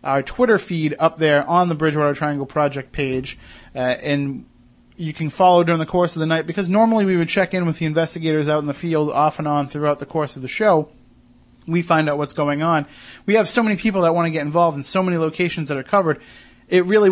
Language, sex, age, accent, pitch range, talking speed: English, male, 30-49, American, 140-165 Hz, 240 wpm